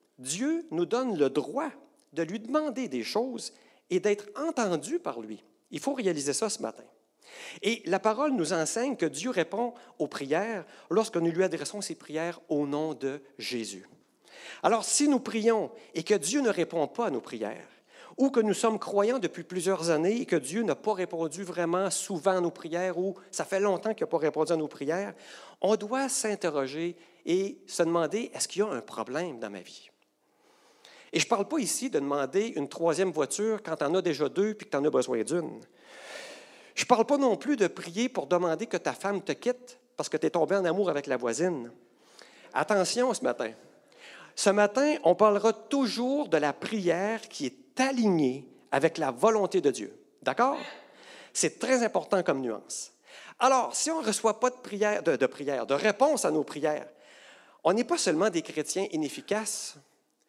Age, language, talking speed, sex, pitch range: 50-69, French, 195 wpm, male, 165-230 Hz